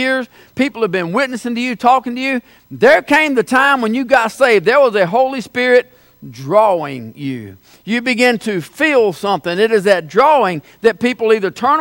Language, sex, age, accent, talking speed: English, male, 50-69, American, 190 wpm